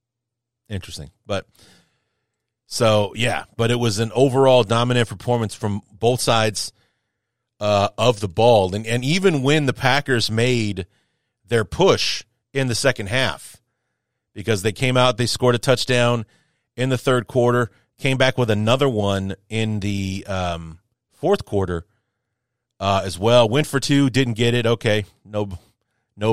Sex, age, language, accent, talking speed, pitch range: male, 30-49, English, American, 150 wpm, 105-125 Hz